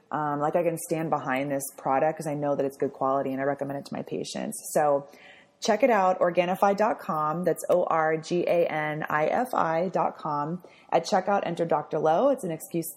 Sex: female